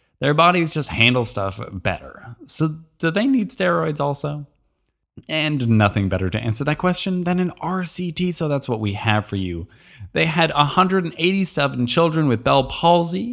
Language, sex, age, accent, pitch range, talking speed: English, male, 20-39, American, 120-170 Hz, 160 wpm